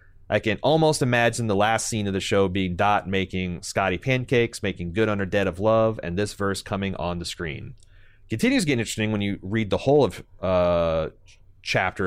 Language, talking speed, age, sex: English, 205 wpm, 30-49, male